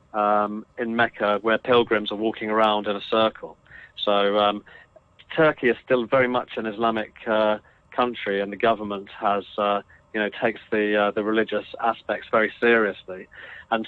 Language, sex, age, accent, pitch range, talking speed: English, male, 30-49, British, 105-125 Hz, 165 wpm